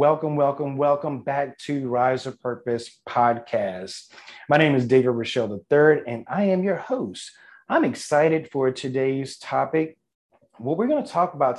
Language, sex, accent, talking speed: English, male, American, 160 wpm